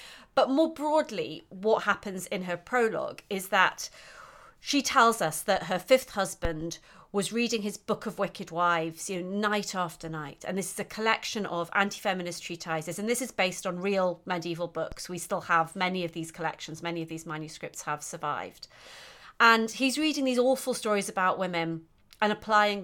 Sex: female